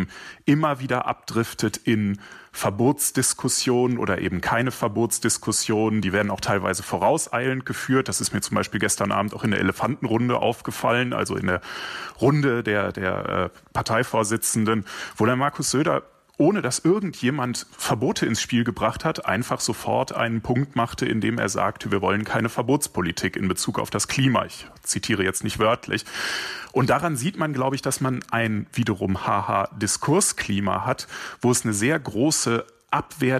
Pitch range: 105-130 Hz